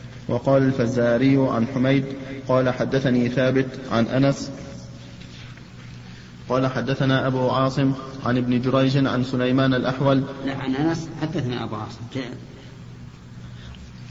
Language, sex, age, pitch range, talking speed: Arabic, male, 30-49, 125-135 Hz, 85 wpm